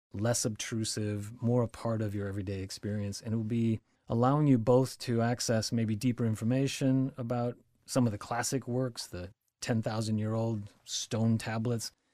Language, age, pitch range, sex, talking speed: English, 30-49, 110-130 Hz, male, 155 wpm